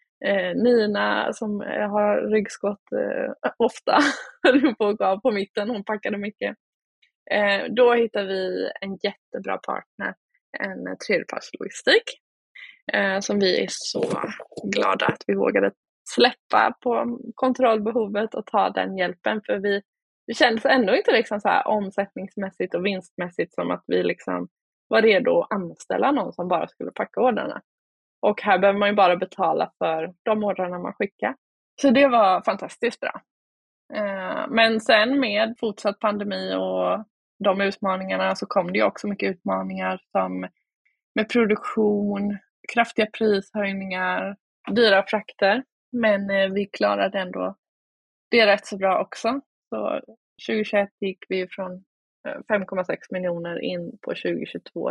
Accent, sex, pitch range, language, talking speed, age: native, female, 190-230 Hz, Swedish, 130 wpm, 20-39